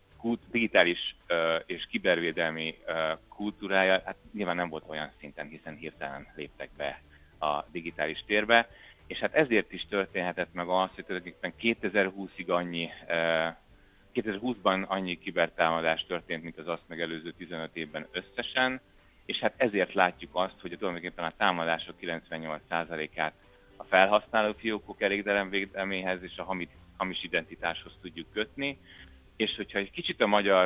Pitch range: 85-105 Hz